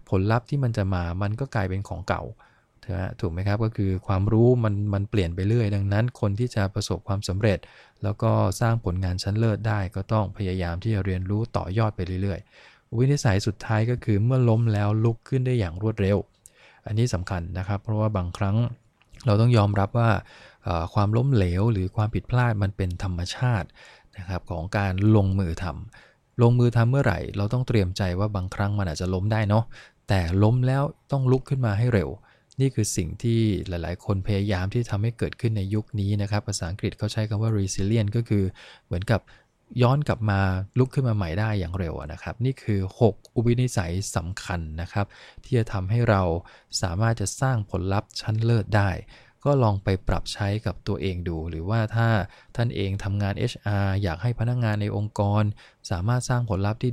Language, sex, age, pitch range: English, male, 20-39, 95-115 Hz